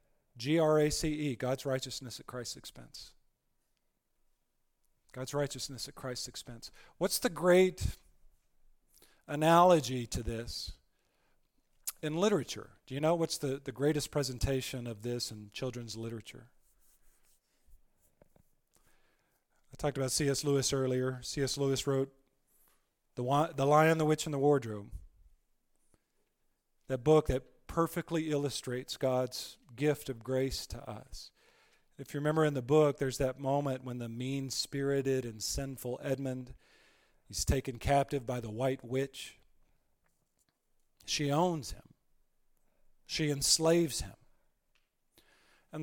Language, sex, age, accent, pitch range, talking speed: English, male, 40-59, American, 130-160 Hz, 115 wpm